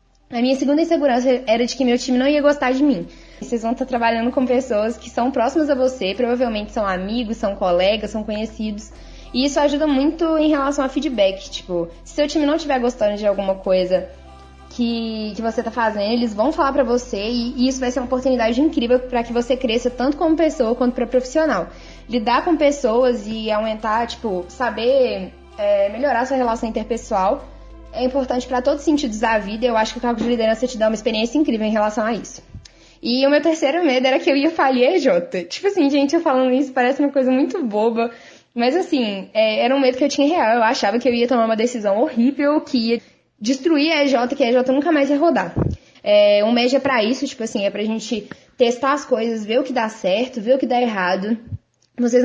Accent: Brazilian